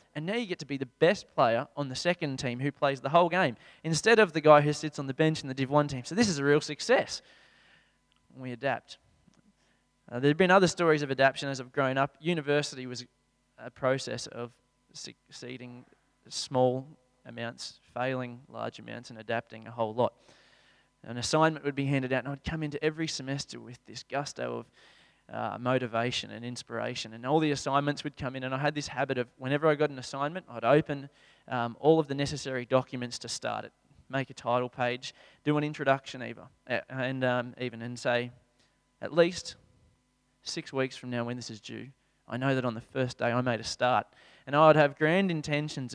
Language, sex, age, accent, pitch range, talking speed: English, male, 20-39, Australian, 125-150 Hz, 200 wpm